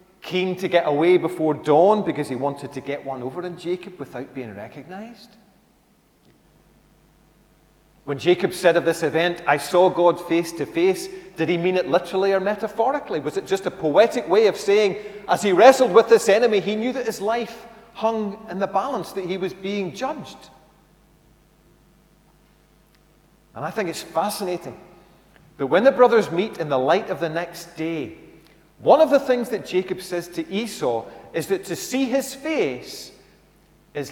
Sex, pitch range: male, 145-200 Hz